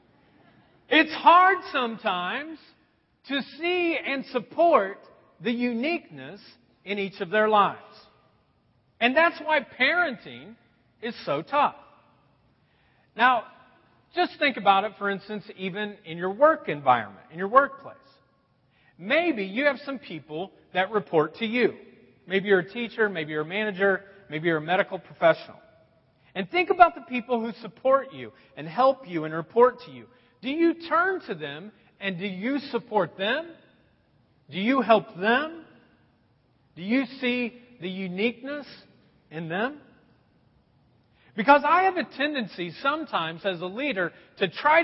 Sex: male